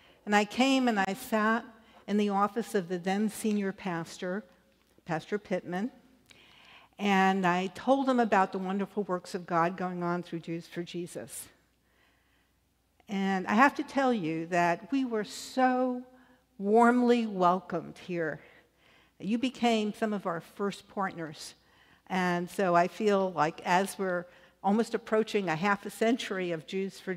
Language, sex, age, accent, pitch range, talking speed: English, female, 60-79, American, 175-220 Hz, 150 wpm